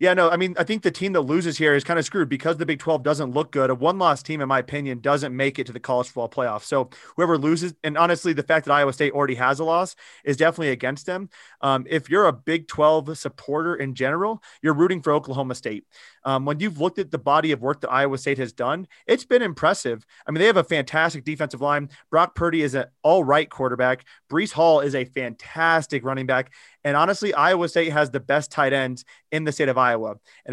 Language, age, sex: English, 30-49, male